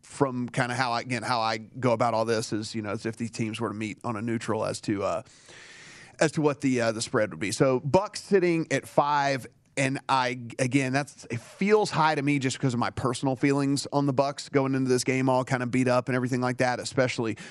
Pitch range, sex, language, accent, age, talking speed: 120-140 Hz, male, English, American, 30-49, 255 wpm